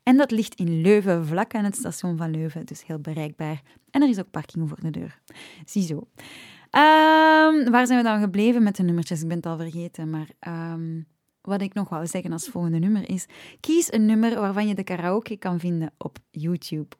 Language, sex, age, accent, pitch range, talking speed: Dutch, female, 20-39, Dutch, 170-215 Hz, 210 wpm